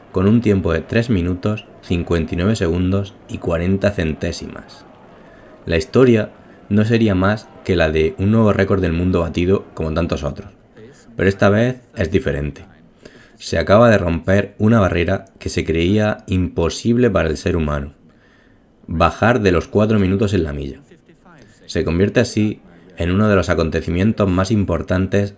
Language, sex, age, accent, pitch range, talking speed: Spanish, male, 20-39, Spanish, 85-105 Hz, 155 wpm